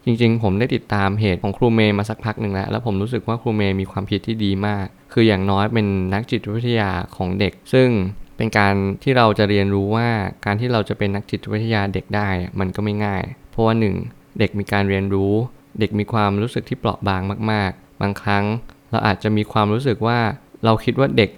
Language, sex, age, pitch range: Thai, male, 20-39, 100-115 Hz